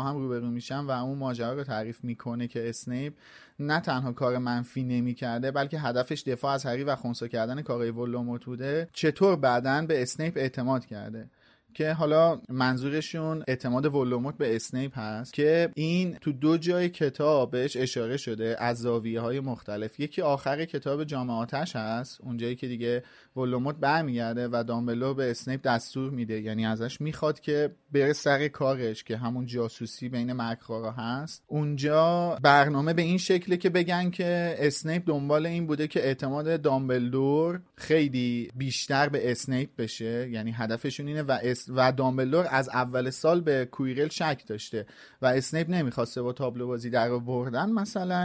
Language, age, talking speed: Persian, 30-49, 155 wpm